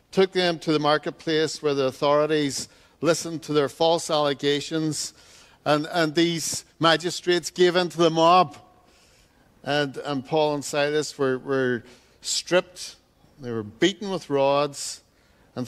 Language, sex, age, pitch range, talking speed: English, male, 60-79, 145-180 Hz, 140 wpm